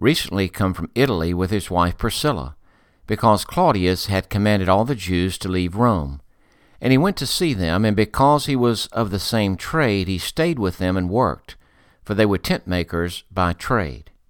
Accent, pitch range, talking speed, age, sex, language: American, 90-115 Hz, 190 wpm, 60-79, male, English